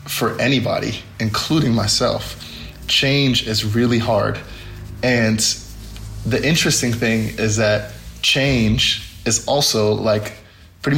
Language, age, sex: English, 20-39, male